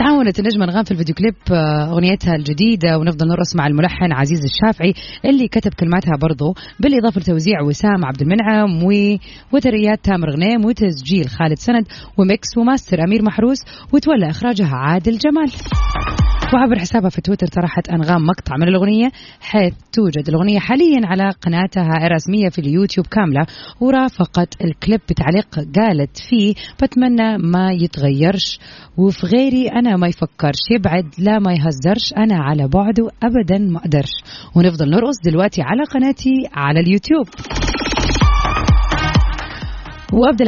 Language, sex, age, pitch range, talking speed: Arabic, female, 30-49, 165-220 Hz, 125 wpm